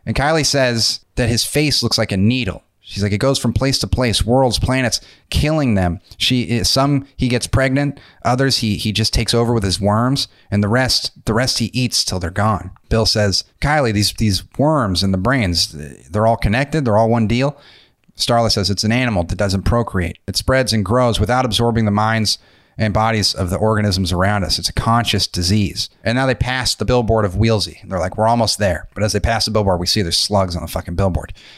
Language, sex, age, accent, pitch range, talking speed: English, male, 30-49, American, 100-120 Hz, 220 wpm